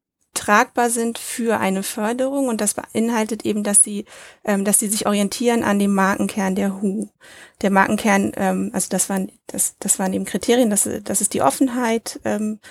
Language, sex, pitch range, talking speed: English, female, 190-230 Hz, 180 wpm